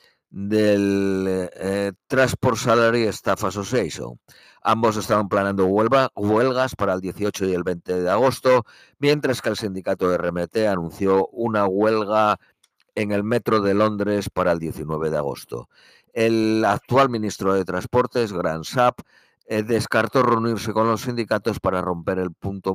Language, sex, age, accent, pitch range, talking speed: Spanish, male, 50-69, Spanish, 95-120 Hz, 140 wpm